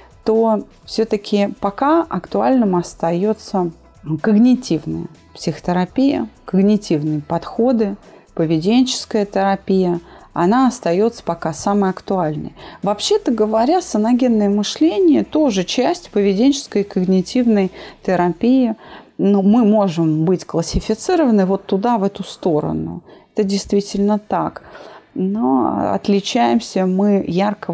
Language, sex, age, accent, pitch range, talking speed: Russian, female, 30-49, native, 175-225 Hz, 95 wpm